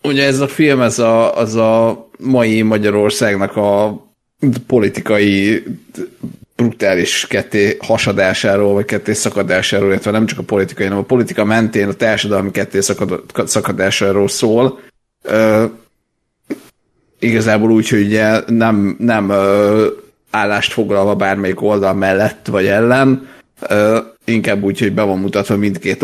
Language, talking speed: Hungarian, 125 wpm